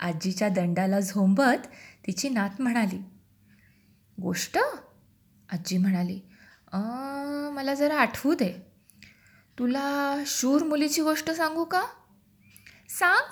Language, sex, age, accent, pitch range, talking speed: Marathi, female, 20-39, native, 185-270 Hz, 90 wpm